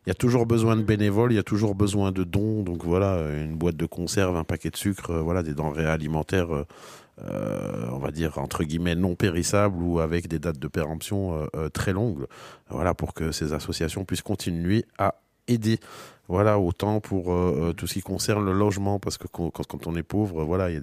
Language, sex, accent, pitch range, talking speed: French, male, French, 85-105 Hz, 215 wpm